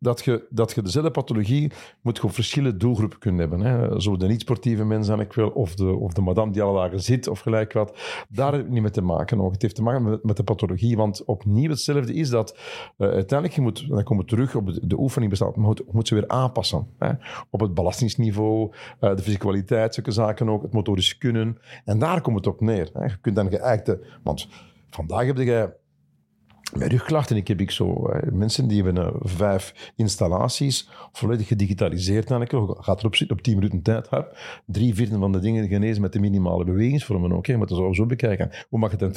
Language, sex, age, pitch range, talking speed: Dutch, male, 50-69, 100-125 Hz, 215 wpm